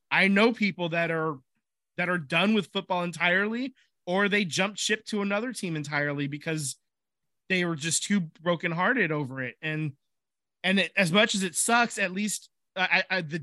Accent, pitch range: American, 145-185 Hz